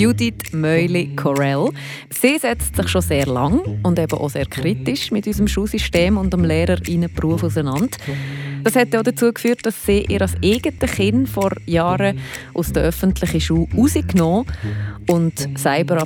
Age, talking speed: 30-49, 155 wpm